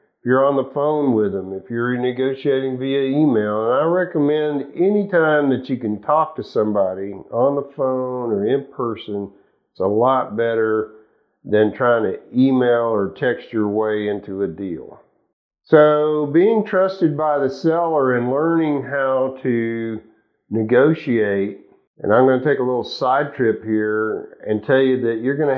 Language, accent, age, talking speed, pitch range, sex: English, American, 50-69, 170 wpm, 115-140 Hz, male